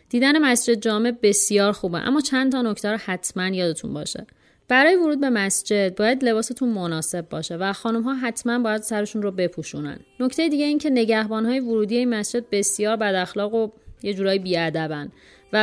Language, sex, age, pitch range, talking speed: Persian, female, 30-49, 185-245 Hz, 175 wpm